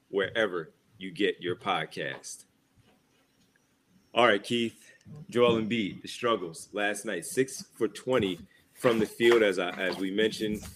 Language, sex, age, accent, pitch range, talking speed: English, male, 30-49, American, 100-120 Hz, 140 wpm